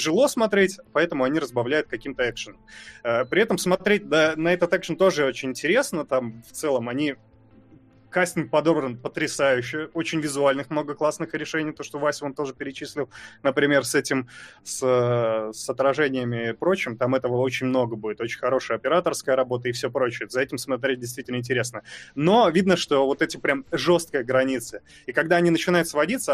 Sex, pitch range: male, 130-160 Hz